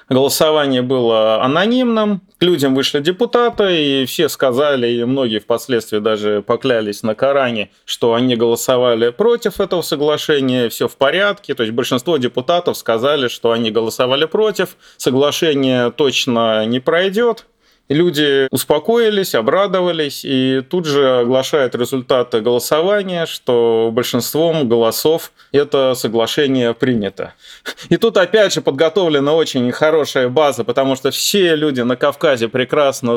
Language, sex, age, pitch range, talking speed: Russian, male, 30-49, 120-165 Hz, 125 wpm